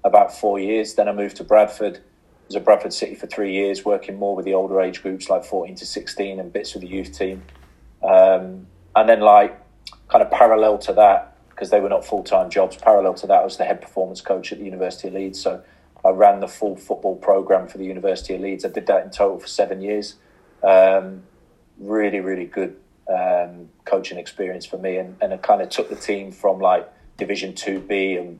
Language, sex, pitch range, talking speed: English, male, 95-105 Hz, 220 wpm